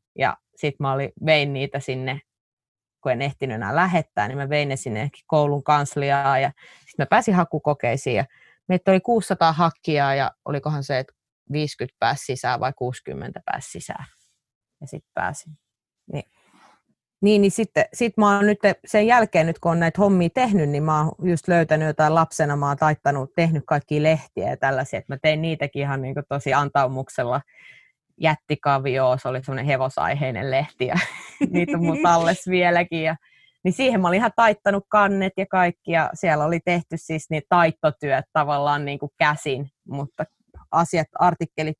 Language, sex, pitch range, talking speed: Finnish, female, 140-170 Hz, 160 wpm